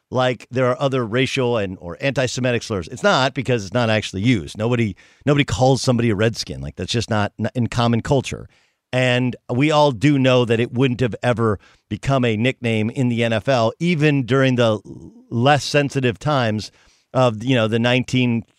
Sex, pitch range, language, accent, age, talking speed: male, 115-150 Hz, English, American, 50-69, 180 wpm